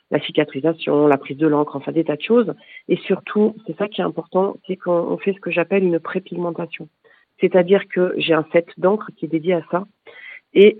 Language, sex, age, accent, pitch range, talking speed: French, female, 40-59, French, 165-200 Hz, 210 wpm